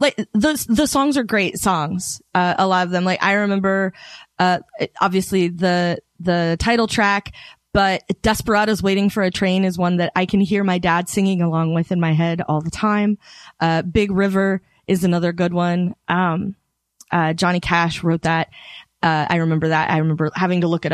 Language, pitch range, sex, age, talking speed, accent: English, 175-200 Hz, female, 20-39, 190 wpm, American